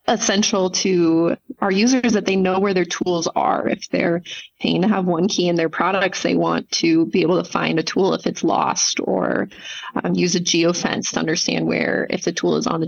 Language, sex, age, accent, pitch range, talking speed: English, female, 20-39, American, 170-210 Hz, 220 wpm